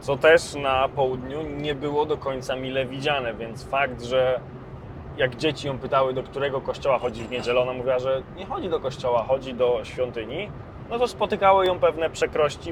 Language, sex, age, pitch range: Polish, male, 20-39, 130-165 Hz